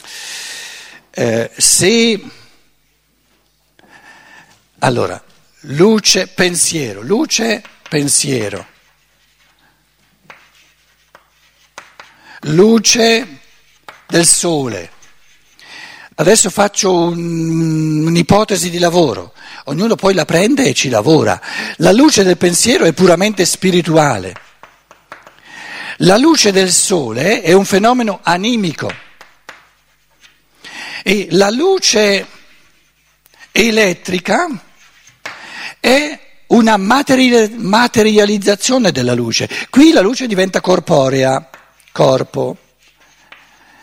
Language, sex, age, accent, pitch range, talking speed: Italian, male, 60-79, native, 170-230 Hz, 75 wpm